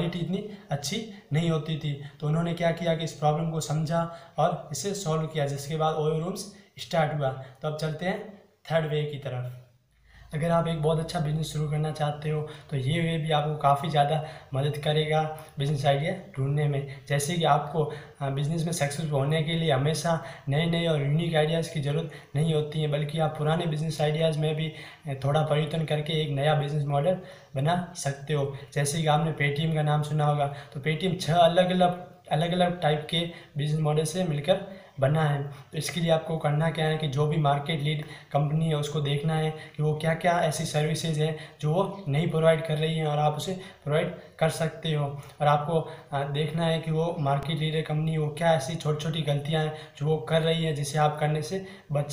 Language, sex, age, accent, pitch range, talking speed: Hindi, male, 20-39, native, 150-165 Hz, 205 wpm